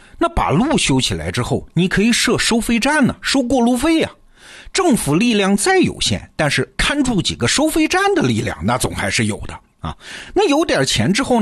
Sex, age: male, 50-69